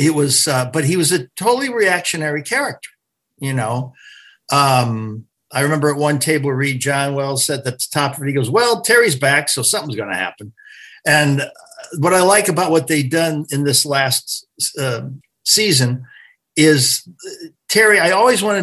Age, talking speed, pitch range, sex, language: 50-69, 180 wpm, 125-155 Hz, male, English